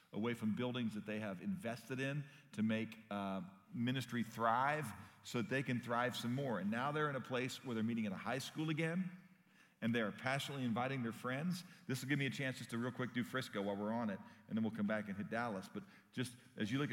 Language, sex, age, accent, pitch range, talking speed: English, male, 40-59, American, 115-140 Hz, 245 wpm